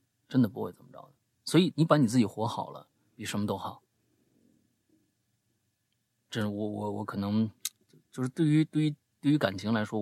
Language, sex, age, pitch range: Chinese, male, 30-49, 105-125 Hz